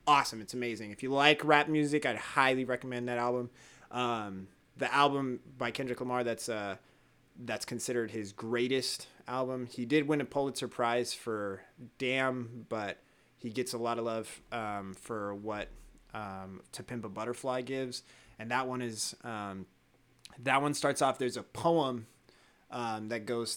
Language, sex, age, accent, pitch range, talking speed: English, male, 30-49, American, 110-125 Hz, 165 wpm